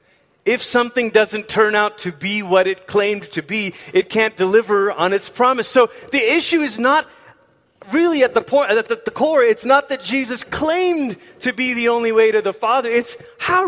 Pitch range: 175-260 Hz